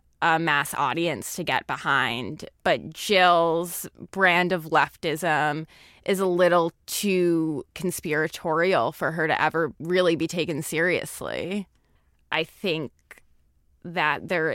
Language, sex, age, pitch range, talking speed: English, female, 20-39, 145-170 Hz, 115 wpm